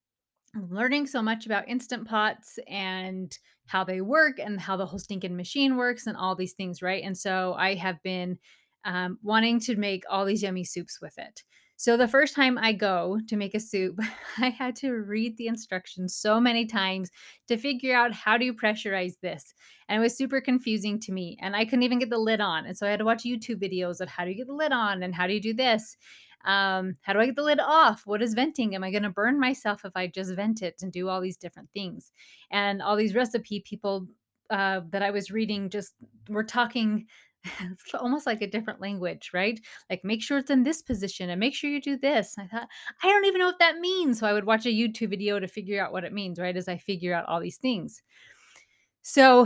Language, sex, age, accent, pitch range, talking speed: English, female, 30-49, American, 190-240 Hz, 235 wpm